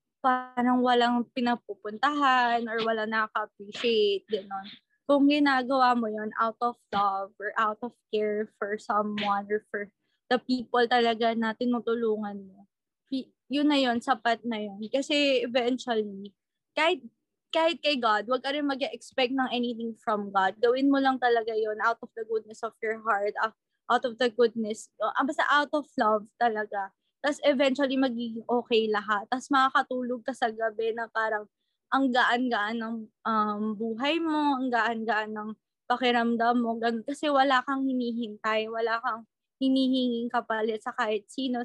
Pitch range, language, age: 220-260 Hz, English, 20-39